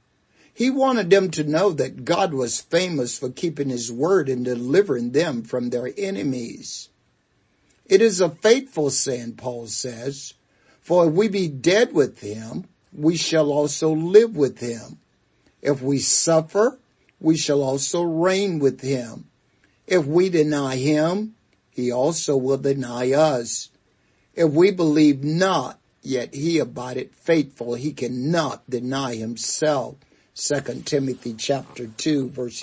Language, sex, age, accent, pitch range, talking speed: English, male, 60-79, American, 125-175 Hz, 135 wpm